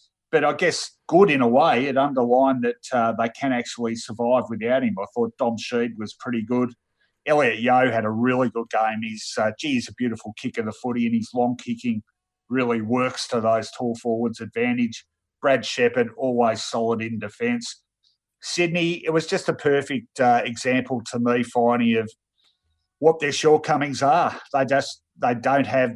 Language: English